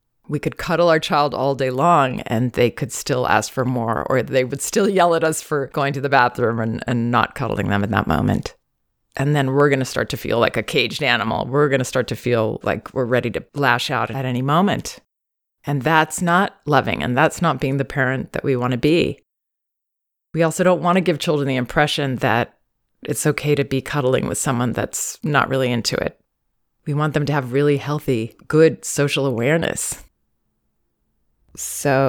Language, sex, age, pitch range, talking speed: English, female, 30-49, 125-165 Hz, 205 wpm